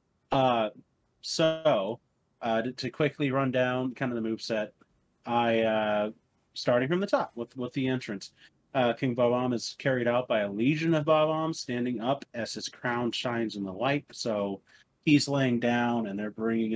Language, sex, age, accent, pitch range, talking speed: English, male, 30-49, American, 110-130 Hz, 175 wpm